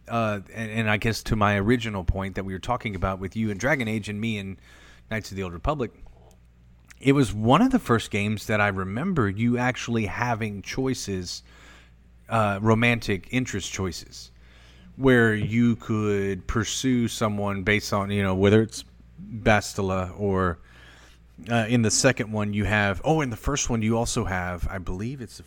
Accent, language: American, English